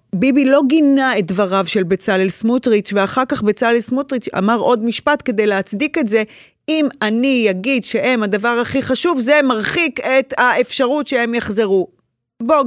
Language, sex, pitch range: Hebrew, female, 205-255 Hz